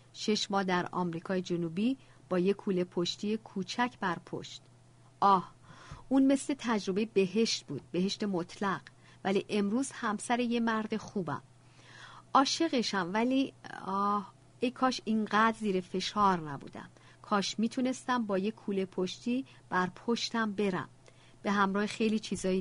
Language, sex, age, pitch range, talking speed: Persian, female, 50-69, 175-225 Hz, 125 wpm